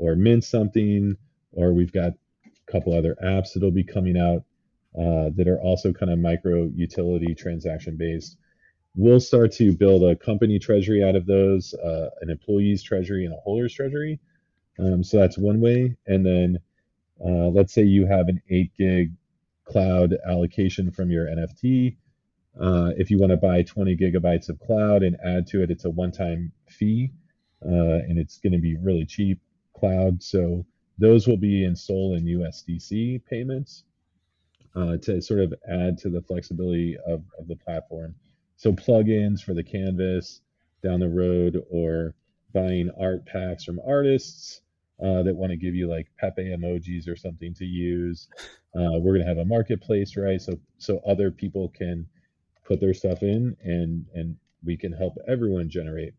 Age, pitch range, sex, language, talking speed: 30-49, 85-100 Hz, male, English, 170 wpm